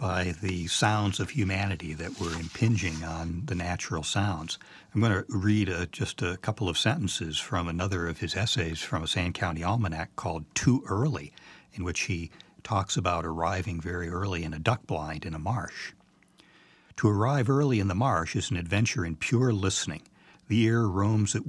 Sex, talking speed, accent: male, 180 wpm, American